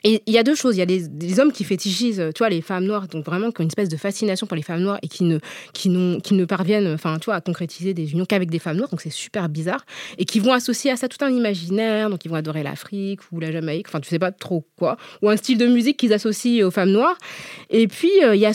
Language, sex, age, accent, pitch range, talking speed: French, female, 20-39, French, 180-235 Hz, 295 wpm